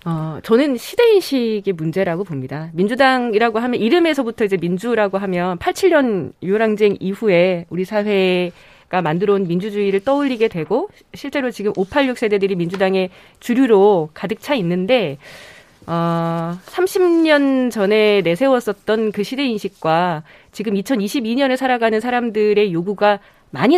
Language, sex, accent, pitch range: Korean, female, native, 185-270 Hz